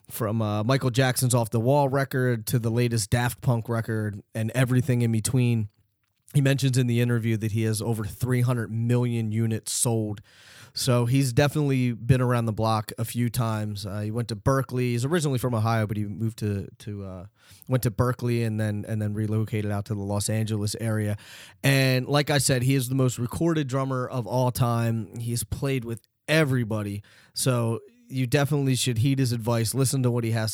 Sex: male